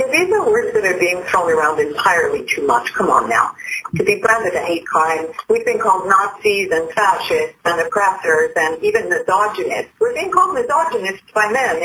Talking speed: 195 wpm